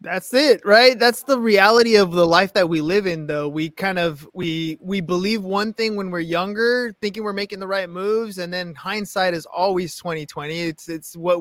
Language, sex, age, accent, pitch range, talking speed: English, male, 20-39, American, 185-230 Hz, 215 wpm